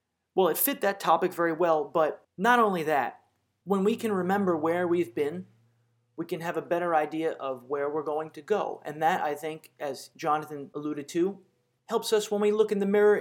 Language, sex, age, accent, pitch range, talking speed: English, male, 30-49, American, 145-185 Hz, 210 wpm